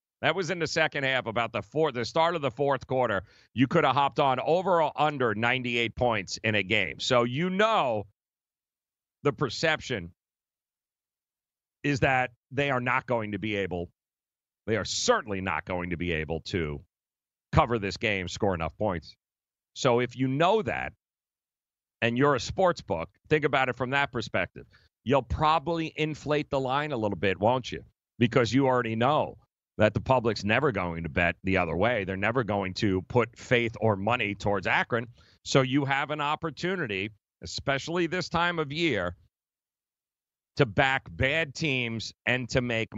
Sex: male